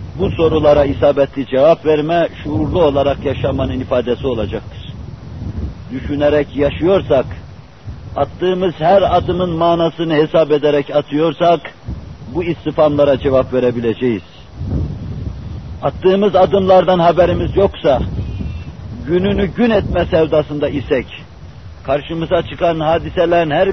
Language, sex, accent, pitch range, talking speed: Turkish, male, native, 115-165 Hz, 90 wpm